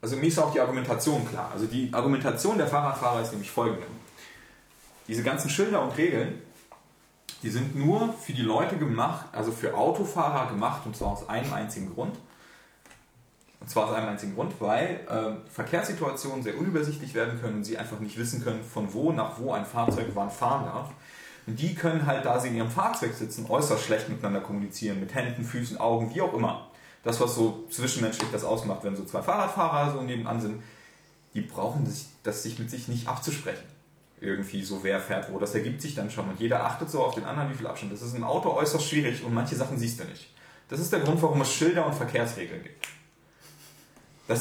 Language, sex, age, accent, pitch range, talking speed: German, male, 30-49, German, 110-150 Hz, 205 wpm